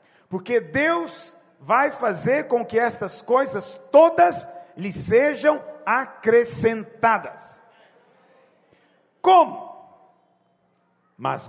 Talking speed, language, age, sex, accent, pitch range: 75 wpm, Portuguese, 50-69, male, Brazilian, 175-245 Hz